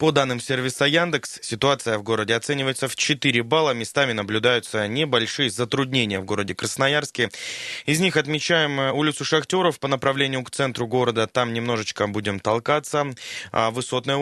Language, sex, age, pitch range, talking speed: Russian, male, 20-39, 110-140 Hz, 140 wpm